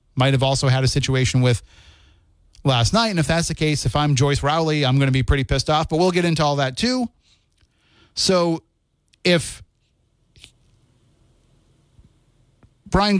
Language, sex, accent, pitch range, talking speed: English, male, American, 115-155 Hz, 160 wpm